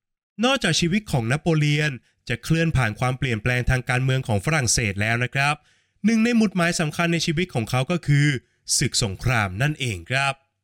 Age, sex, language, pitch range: 20-39, male, Thai, 120-170 Hz